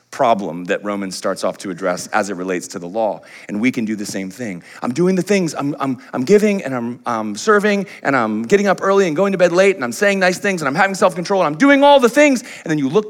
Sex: male